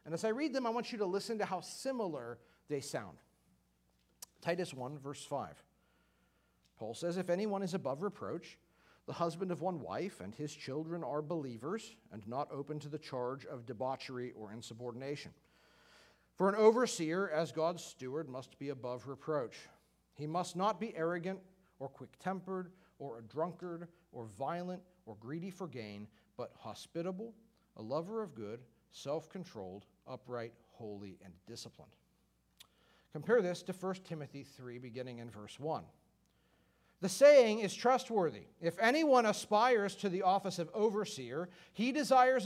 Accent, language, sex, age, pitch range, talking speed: American, English, male, 40-59, 140-205 Hz, 150 wpm